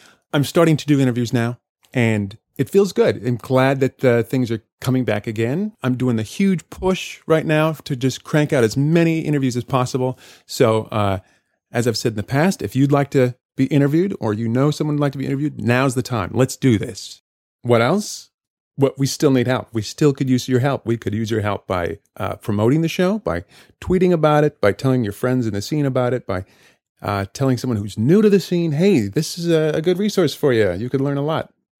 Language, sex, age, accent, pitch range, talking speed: English, male, 30-49, American, 115-150 Hz, 230 wpm